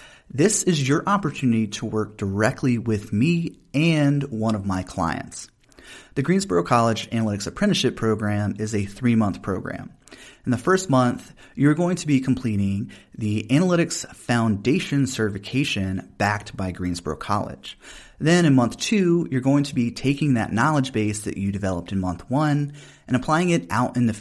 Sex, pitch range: male, 105-145 Hz